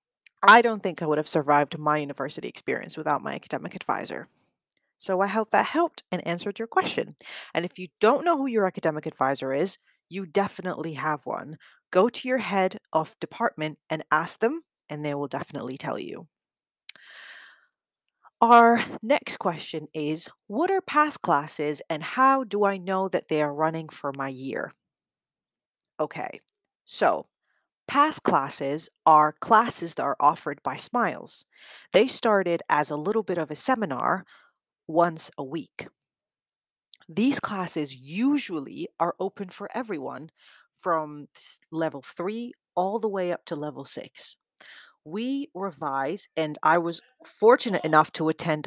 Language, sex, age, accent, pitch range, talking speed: English, female, 30-49, American, 150-210 Hz, 150 wpm